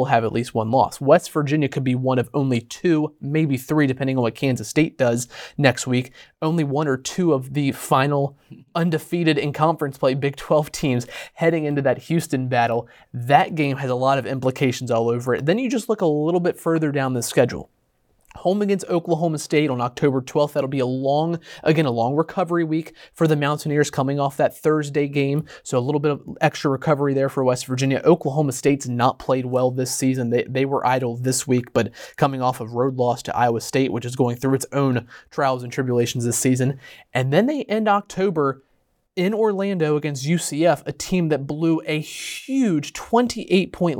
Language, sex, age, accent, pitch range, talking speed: English, male, 30-49, American, 130-165 Hz, 200 wpm